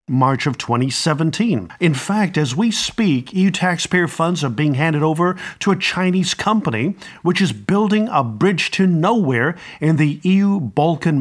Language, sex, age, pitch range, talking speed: English, male, 50-69, 135-175 Hz, 160 wpm